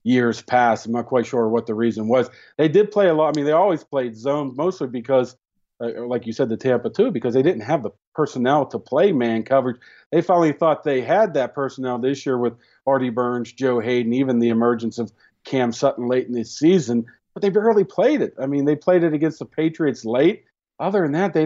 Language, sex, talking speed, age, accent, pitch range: English, male, 230 wpm, 40-59, American, 120-145 Hz